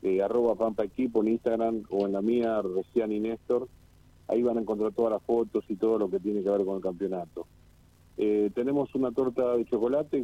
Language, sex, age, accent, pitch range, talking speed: Spanish, male, 40-59, Argentinian, 95-115 Hz, 205 wpm